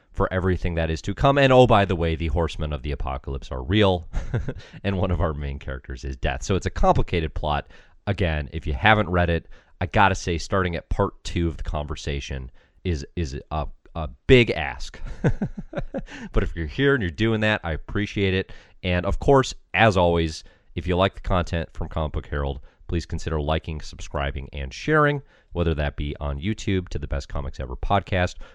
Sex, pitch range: male, 75-105 Hz